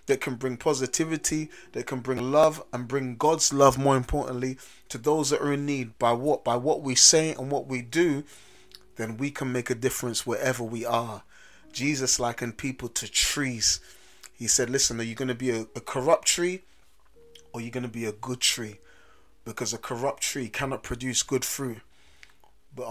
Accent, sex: British, male